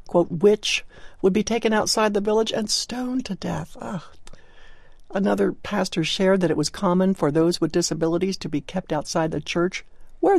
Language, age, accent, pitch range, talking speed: English, 60-79, American, 155-215 Hz, 170 wpm